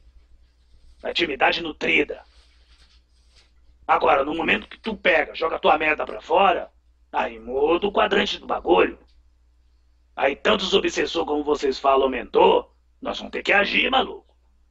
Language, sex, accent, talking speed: Portuguese, male, Brazilian, 135 wpm